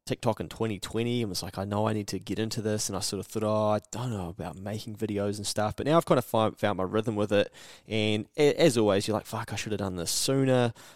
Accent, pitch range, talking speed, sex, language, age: Australian, 95-110 Hz, 275 wpm, male, English, 20-39